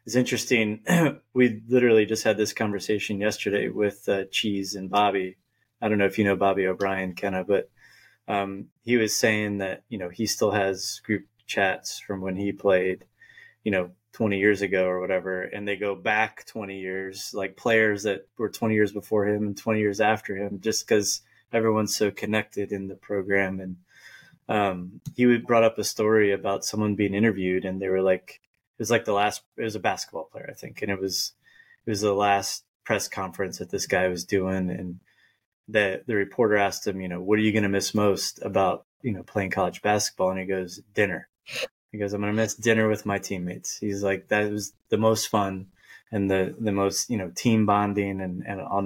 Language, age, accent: English, 20-39, American